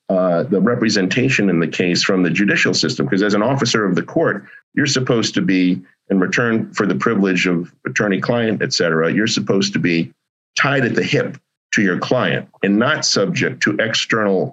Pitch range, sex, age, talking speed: 90-110 Hz, male, 50-69, 195 wpm